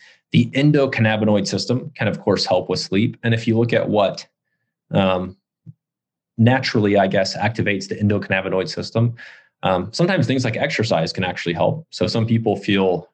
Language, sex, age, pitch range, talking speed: English, male, 20-39, 95-120 Hz, 160 wpm